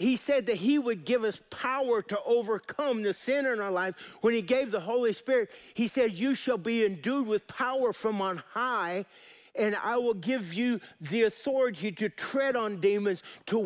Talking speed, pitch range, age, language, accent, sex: 195 wpm, 195-255 Hz, 50-69, English, American, male